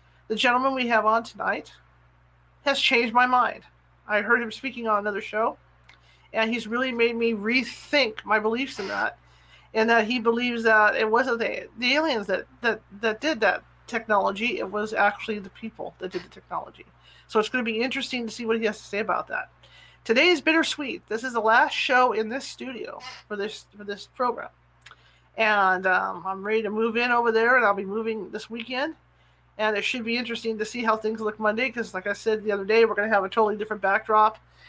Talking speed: 215 wpm